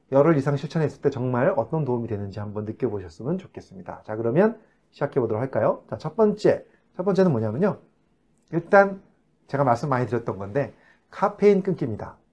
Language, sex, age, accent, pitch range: Korean, male, 30-49, native, 120-185 Hz